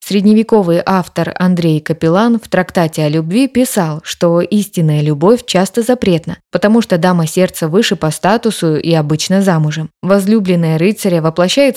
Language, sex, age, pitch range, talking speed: Russian, female, 20-39, 165-210 Hz, 140 wpm